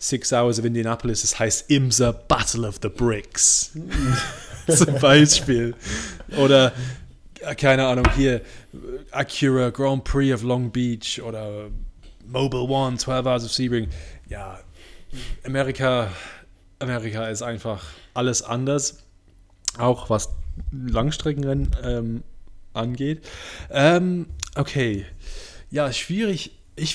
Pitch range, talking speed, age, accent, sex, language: 110-140 Hz, 105 wpm, 20-39, German, male, German